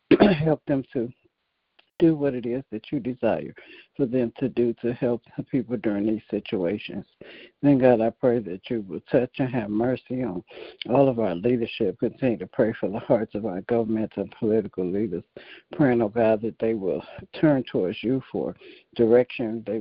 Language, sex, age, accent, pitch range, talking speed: English, male, 60-79, American, 110-130 Hz, 180 wpm